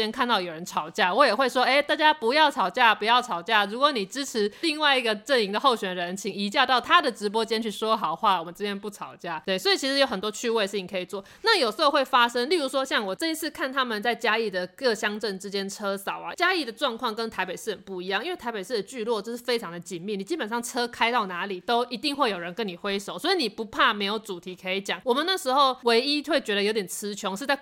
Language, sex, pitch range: Chinese, female, 200-270 Hz